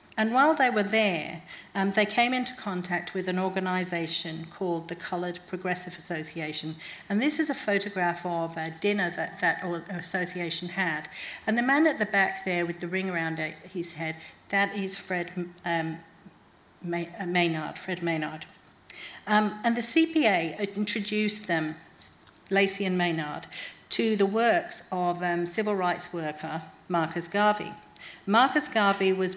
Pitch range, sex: 170-210 Hz, female